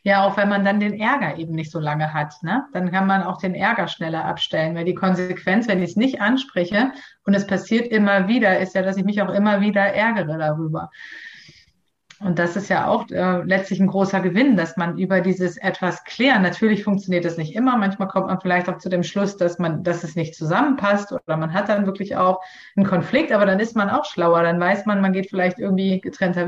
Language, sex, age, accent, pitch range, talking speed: German, female, 30-49, German, 180-205 Hz, 230 wpm